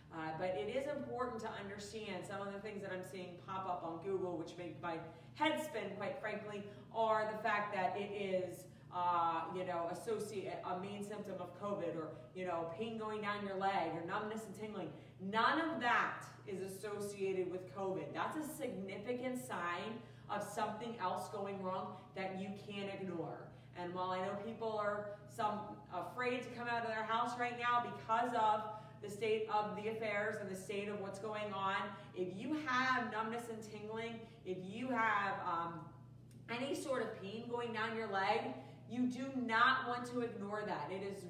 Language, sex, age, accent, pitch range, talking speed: English, female, 30-49, American, 185-225 Hz, 185 wpm